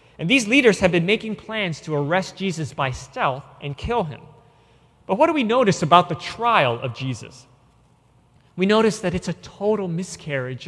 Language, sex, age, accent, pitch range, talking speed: English, male, 30-49, American, 130-175 Hz, 180 wpm